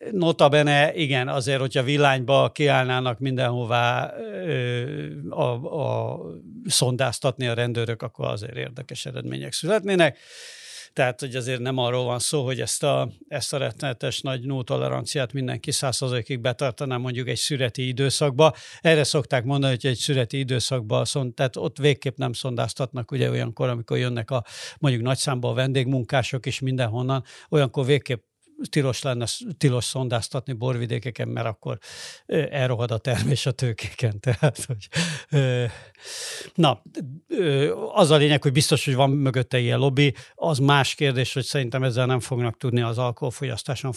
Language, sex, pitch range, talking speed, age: Hungarian, male, 125-145 Hz, 140 wpm, 60-79